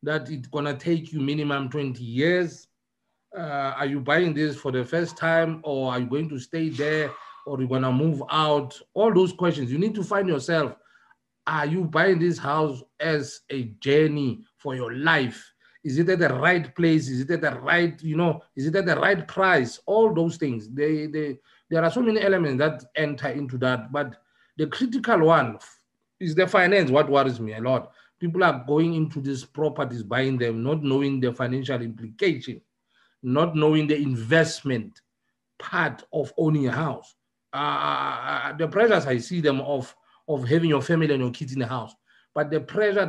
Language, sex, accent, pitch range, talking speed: English, male, South African, 135-165 Hz, 190 wpm